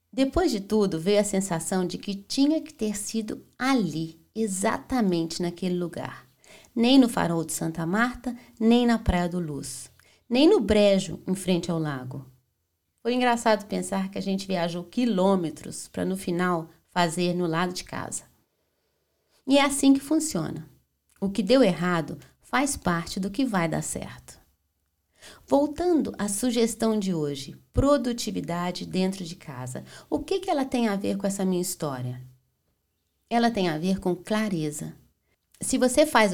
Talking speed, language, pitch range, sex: 155 wpm, Portuguese, 165-235 Hz, female